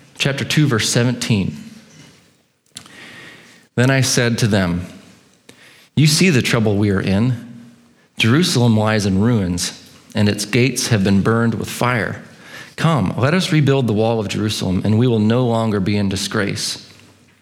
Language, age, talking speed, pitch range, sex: English, 40-59, 150 wpm, 110-135 Hz, male